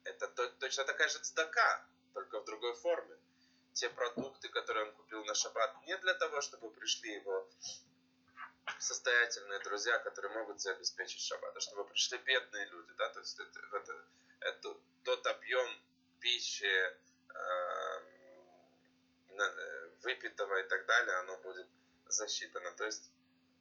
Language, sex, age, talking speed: Russian, male, 20-39, 130 wpm